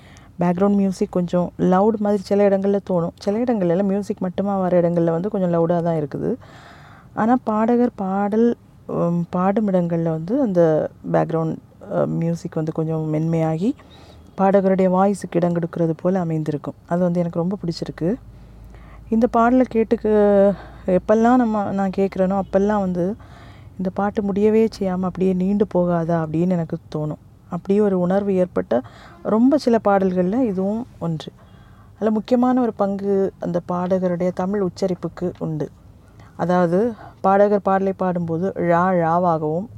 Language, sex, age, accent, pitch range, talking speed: Tamil, female, 30-49, native, 170-205 Hz, 125 wpm